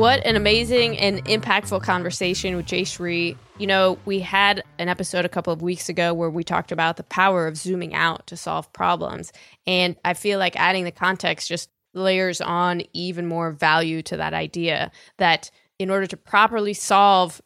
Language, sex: English, female